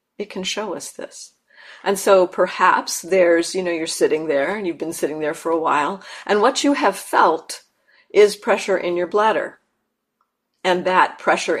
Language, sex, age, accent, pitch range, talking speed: English, female, 50-69, American, 180-230 Hz, 175 wpm